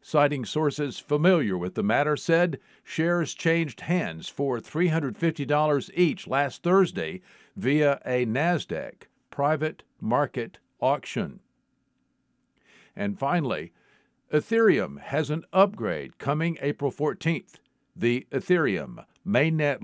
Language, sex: English, male